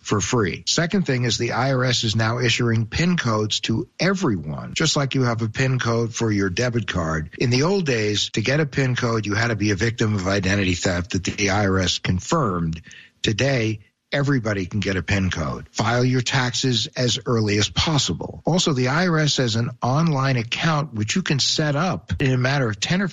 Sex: male